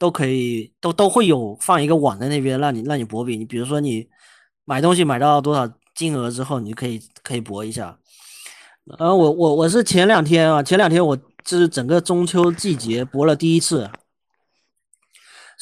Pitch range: 120-165 Hz